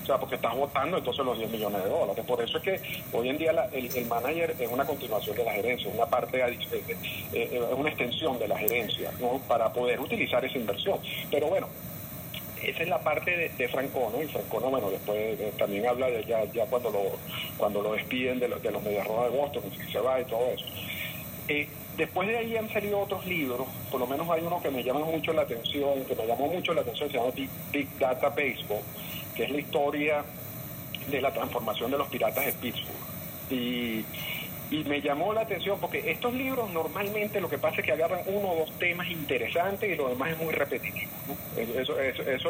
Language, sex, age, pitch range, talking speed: Spanish, male, 50-69, 135-170 Hz, 225 wpm